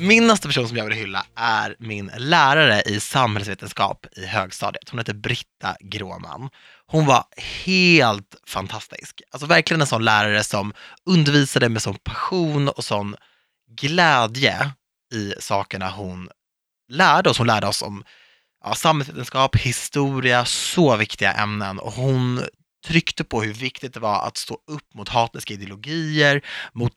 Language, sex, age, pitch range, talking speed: Swedish, male, 20-39, 105-150 Hz, 140 wpm